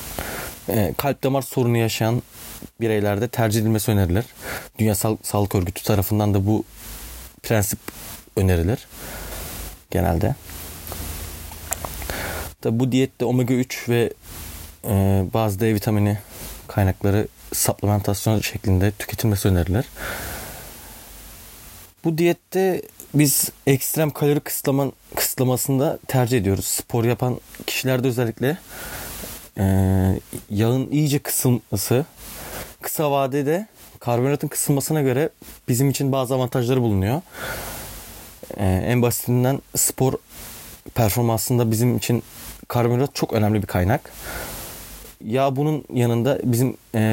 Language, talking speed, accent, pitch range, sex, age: Turkish, 95 wpm, native, 105-130 Hz, male, 30-49